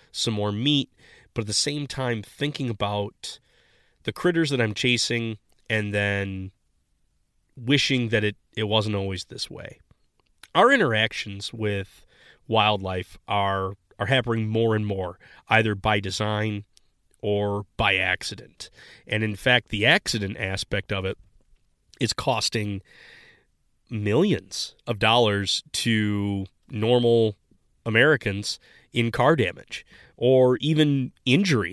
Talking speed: 120 wpm